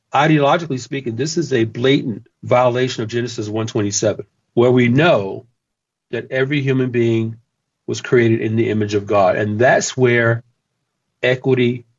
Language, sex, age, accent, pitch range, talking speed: English, male, 40-59, American, 115-135 Hz, 140 wpm